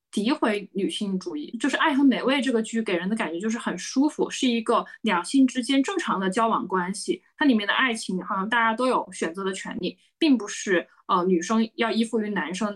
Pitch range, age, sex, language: 185-255 Hz, 20-39, female, Chinese